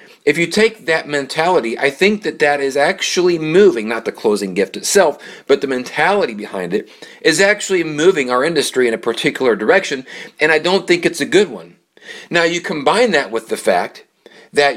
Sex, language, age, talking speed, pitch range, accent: male, English, 40-59, 190 wpm, 140-205 Hz, American